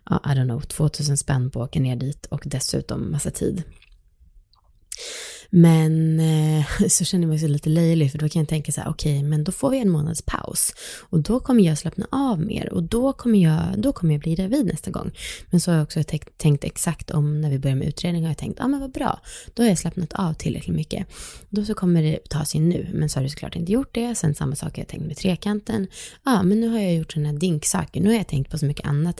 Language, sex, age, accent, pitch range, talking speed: Swedish, female, 20-39, native, 150-185 Hz, 260 wpm